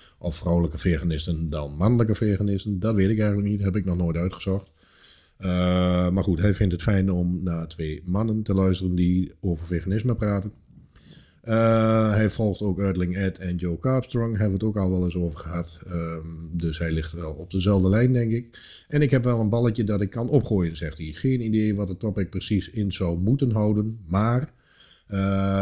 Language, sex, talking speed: Dutch, male, 200 wpm